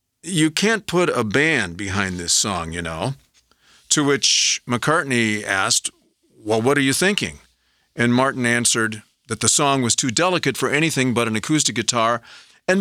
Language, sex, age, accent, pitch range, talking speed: English, male, 50-69, American, 115-155 Hz, 165 wpm